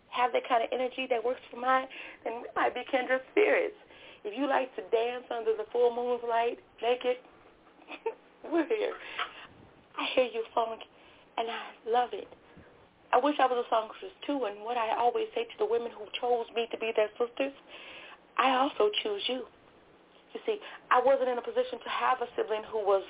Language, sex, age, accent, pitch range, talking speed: English, female, 30-49, American, 215-260 Hz, 190 wpm